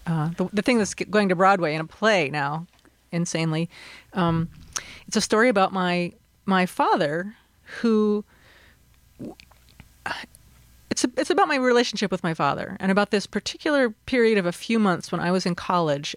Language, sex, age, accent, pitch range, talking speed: English, female, 30-49, American, 165-210 Hz, 165 wpm